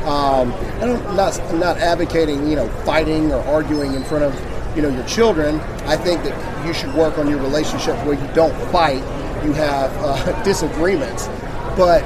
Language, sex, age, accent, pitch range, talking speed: English, male, 40-59, American, 135-165 Hz, 190 wpm